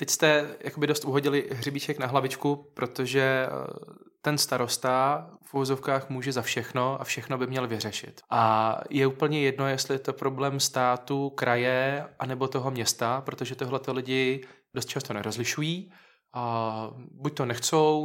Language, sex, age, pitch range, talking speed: Czech, male, 20-39, 125-135 Hz, 145 wpm